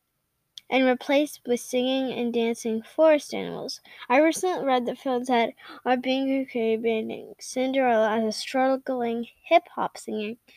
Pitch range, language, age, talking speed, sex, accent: 225-265 Hz, English, 10-29, 130 wpm, female, American